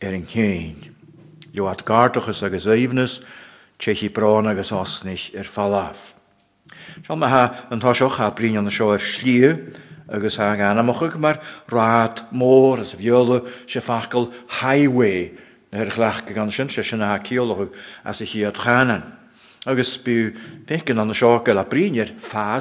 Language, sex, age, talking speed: English, male, 50-69, 70 wpm